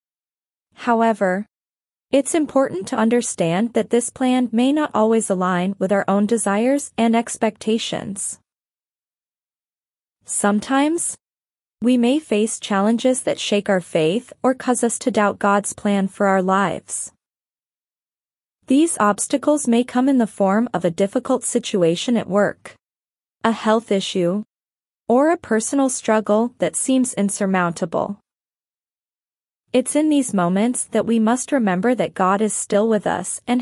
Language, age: English, 20-39